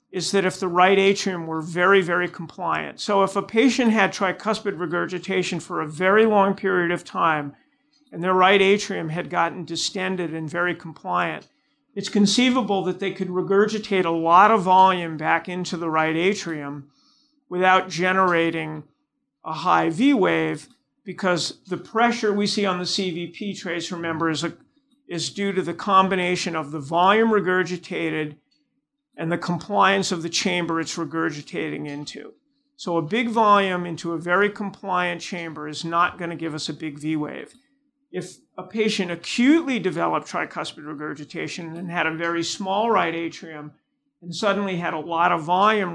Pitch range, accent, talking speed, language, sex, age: 165-200 Hz, American, 160 wpm, English, male, 50-69